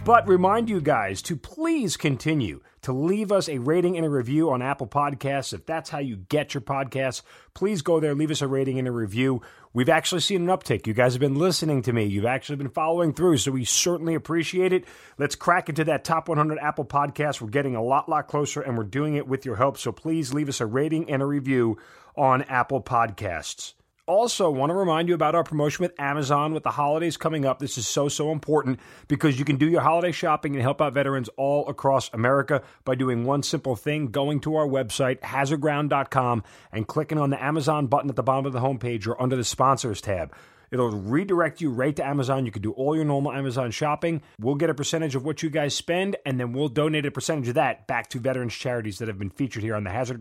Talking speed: 230 wpm